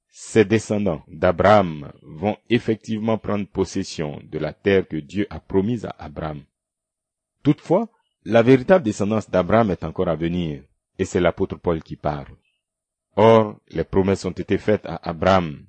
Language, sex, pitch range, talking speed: French, male, 85-120 Hz, 150 wpm